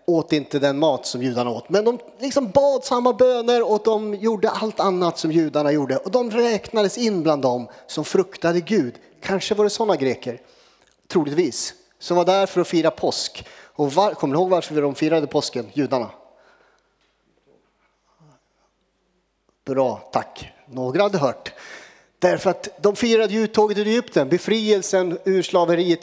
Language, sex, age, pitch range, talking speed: Swedish, male, 30-49, 155-210 Hz, 155 wpm